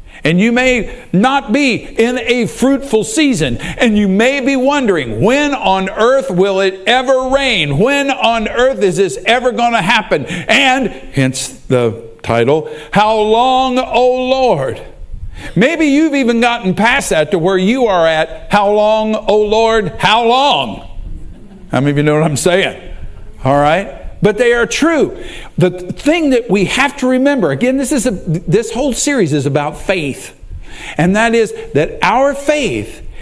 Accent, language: American, English